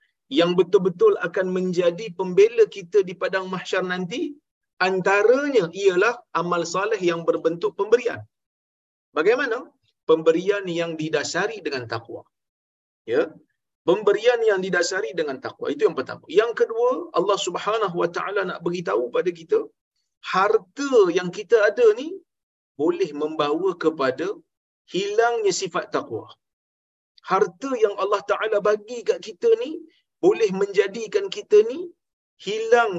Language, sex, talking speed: Malayalam, male, 120 wpm